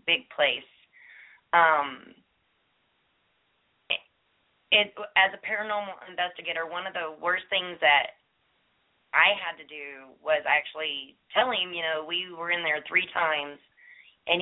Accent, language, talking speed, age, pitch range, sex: American, English, 135 wpm, 20-39, 155-185 Hz, female